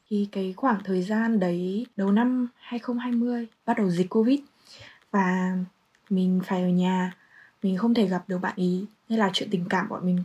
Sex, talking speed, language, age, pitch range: female, 185 wpm, Vietnamese, 10-29, 185-235 Hz